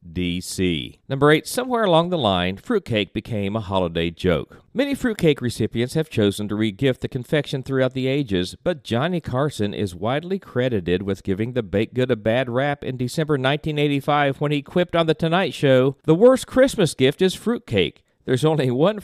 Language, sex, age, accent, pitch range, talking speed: English, male, 50-69, American, 110-155 Hz, 180 wpm